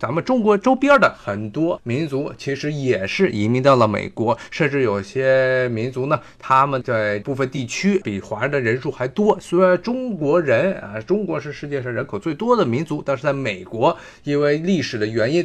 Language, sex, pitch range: Chinese, male, 120-175 Hz